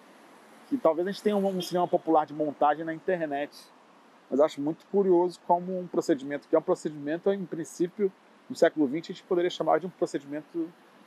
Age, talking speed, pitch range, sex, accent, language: 40-59, 195 wpm, 140-210 Hz, male, Brazilian, Portuguese